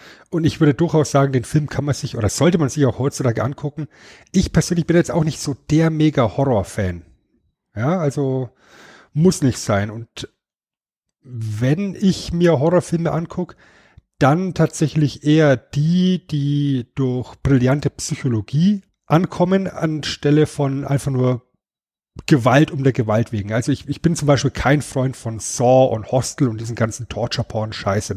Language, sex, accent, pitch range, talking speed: German, male, German, 120-155 Hz, 150 wpm